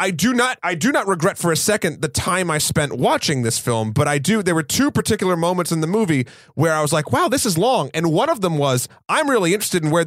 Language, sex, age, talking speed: English, male, 30-49, 275 wpm